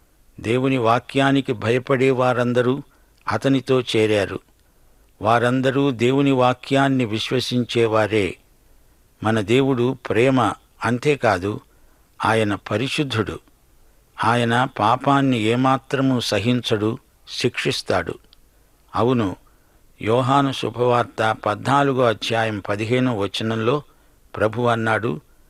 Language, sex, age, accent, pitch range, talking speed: English, male, 60-79, Indian, 110-135 Hz, 70 wpm